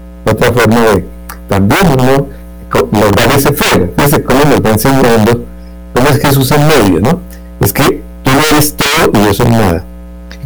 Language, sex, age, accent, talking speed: Spanish, male, 60-79, Mexican, 170 wpm